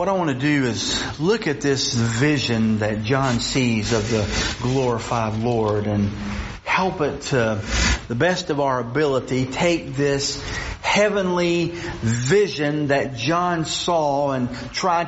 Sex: male